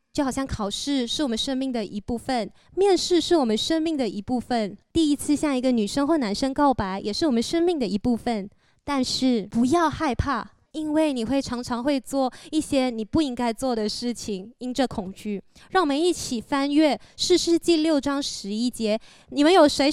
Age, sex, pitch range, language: 20-39, female, 225-310 Hz, Chinese